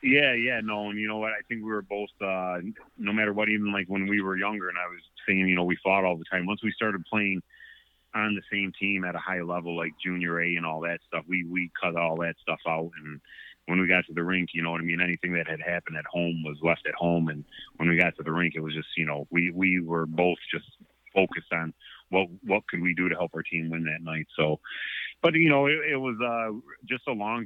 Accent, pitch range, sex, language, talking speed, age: American, 85-95 Hz, male, English, 270 wpm, 30-49